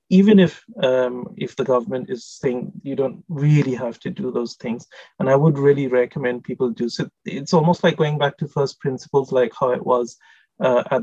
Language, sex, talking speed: English, male, 205 wpm